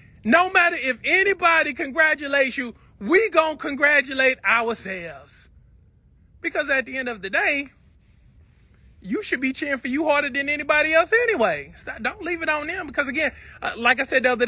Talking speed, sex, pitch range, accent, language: 170 wpm, male, 200-305 Hz, American, English